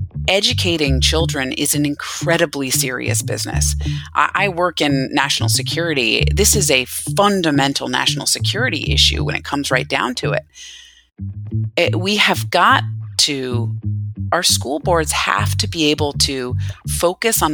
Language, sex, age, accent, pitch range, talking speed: English, female, 30-49, American, 120-180 Hz, 145 wpm